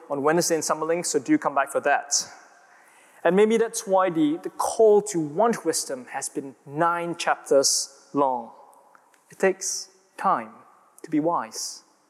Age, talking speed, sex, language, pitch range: 20-39, 155 wpm, male, English, 145-185 Hz